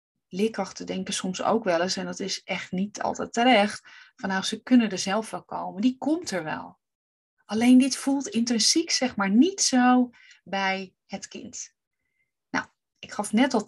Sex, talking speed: female, 180 wpm